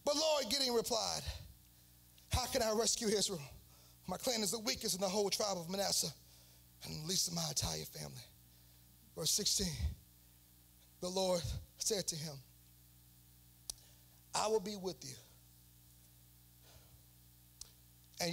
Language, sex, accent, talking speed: English, male, American, 130 wpm